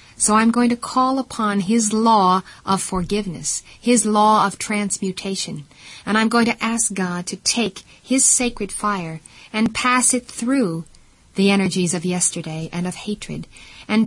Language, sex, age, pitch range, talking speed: English, female, 40-59, 175-225 Hz, 160 wpm